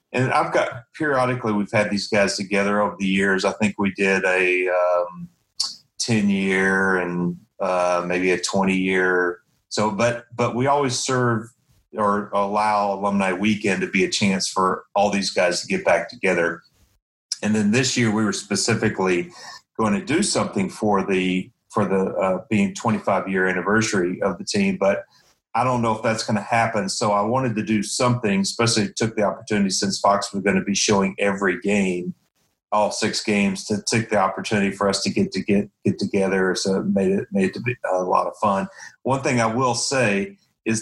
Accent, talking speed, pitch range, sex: American, 200 wpm, 95-115 Hz, male